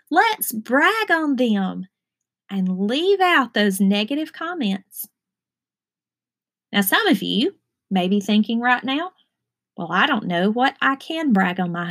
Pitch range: 190-275 Hz